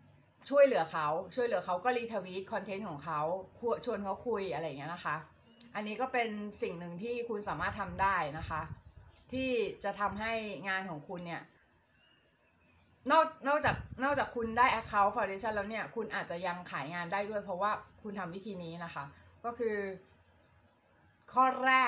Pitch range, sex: 190-250 Hz, female